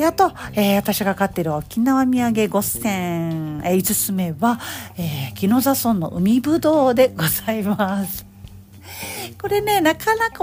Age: 40-59